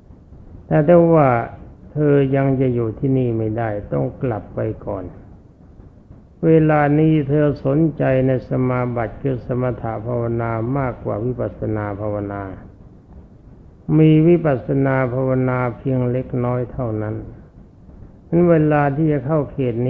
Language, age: Thai, 60-79